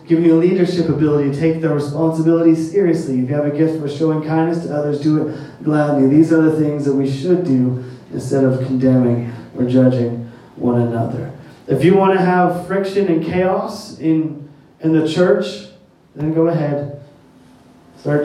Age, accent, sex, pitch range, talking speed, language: 30-49, American, male, 125-165 Hz, 180 wpm, English